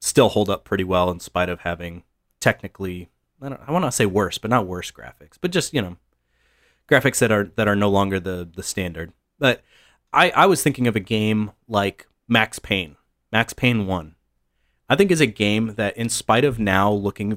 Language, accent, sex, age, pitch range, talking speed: English, American, male, 30-49, 95-120 Hz, 205 wpm